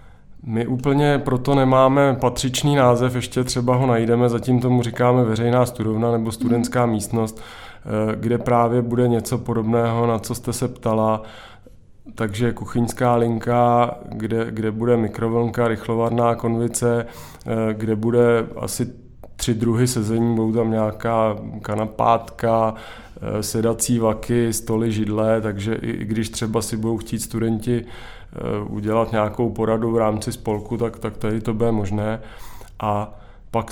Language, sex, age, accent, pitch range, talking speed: Czech, male, 20-39, native, 110-125 Hz, 130 wpm